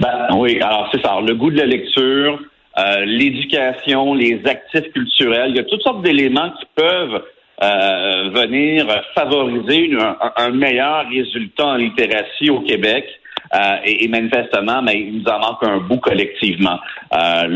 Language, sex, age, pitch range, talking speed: French, male, 50-69, 115-155 Hz, 165 wpm